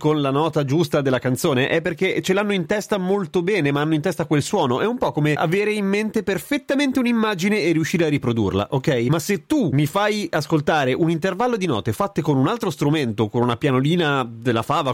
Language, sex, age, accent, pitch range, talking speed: Italian, male, 30-49, native, 130-190 Hz, 215 wpm